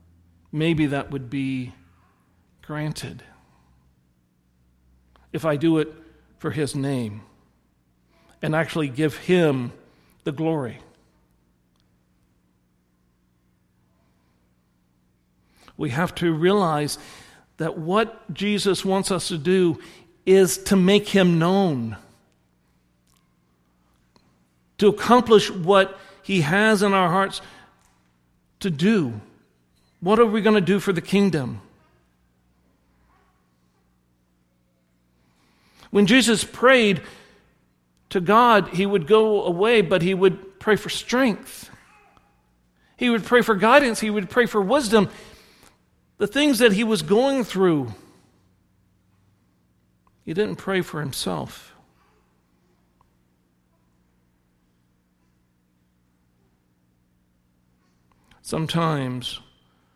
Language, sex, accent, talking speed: English, male, American, 90 wpm